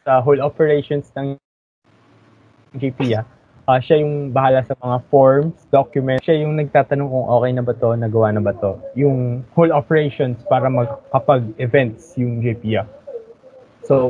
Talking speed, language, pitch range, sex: 155 wpm, Filipino, 125-150 Hz, male